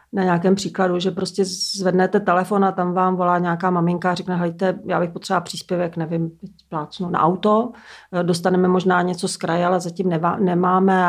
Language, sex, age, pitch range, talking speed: Czech, female, 40-59, 175-195 Hz, 175 wpm